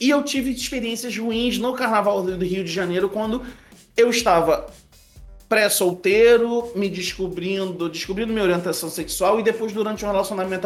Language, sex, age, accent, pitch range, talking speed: Portuguese, male, 30-49, Brazilian, 175-230 Hz, 145 wpm